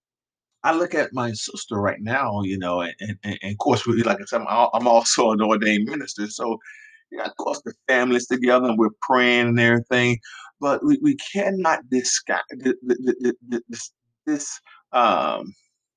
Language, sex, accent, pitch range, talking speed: English, male, American, 110-155 Hz, 160 wpm